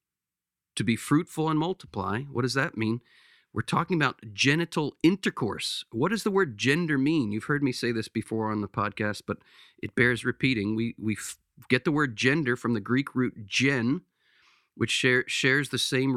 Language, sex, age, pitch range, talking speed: English, male, 40-59, 120-155 Hz, 185 wpm